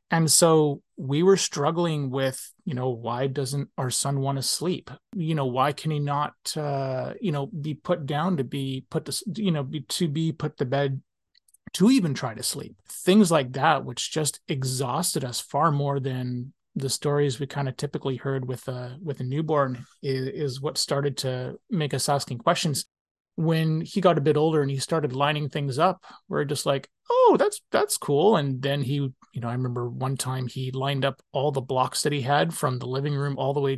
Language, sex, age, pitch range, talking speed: English, male, 30-49, 130-160 Hz, 210 wpm